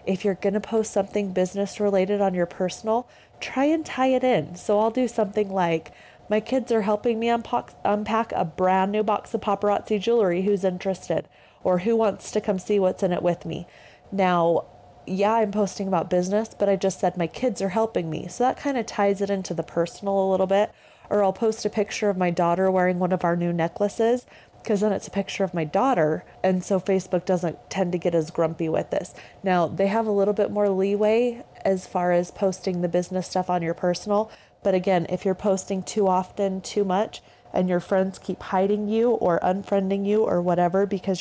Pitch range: 180-210 Hz